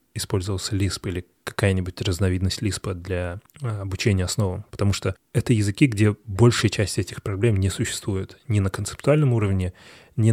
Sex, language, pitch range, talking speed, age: male, Russian, 100-120 Hz, 145 wpm, 20-39